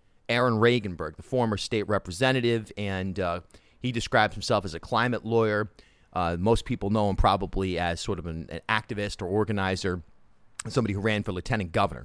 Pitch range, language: 95-120 Hz, English